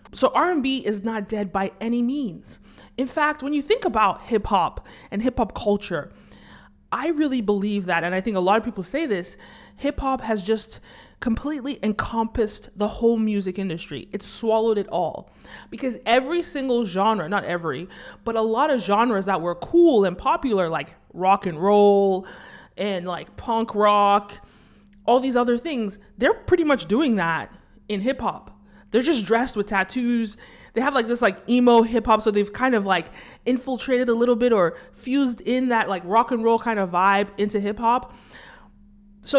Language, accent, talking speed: English, American, 185 wpm